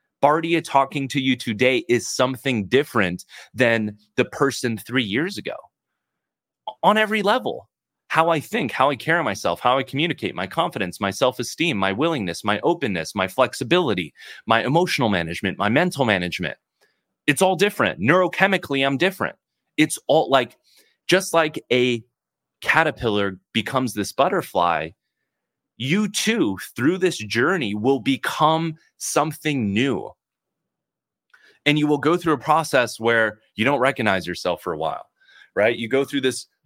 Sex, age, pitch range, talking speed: male, 30-49, 110-145 Hz, 145 wpm